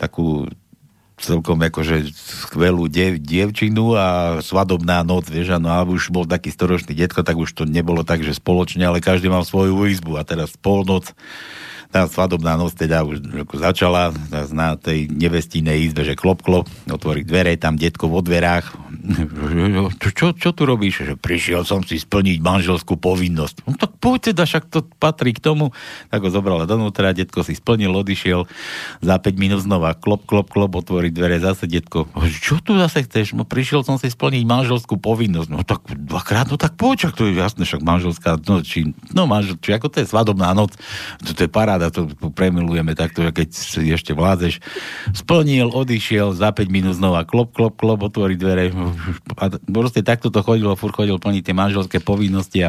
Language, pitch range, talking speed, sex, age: Slovak, 85-105 Hz, 165 wpm, male, 60-79